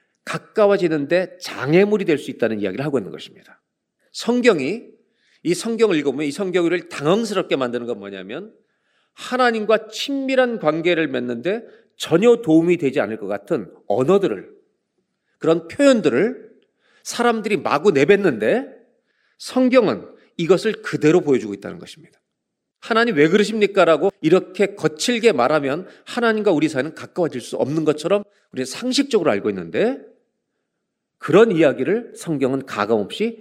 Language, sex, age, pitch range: Korean, male, 40-59, 145-215 Hz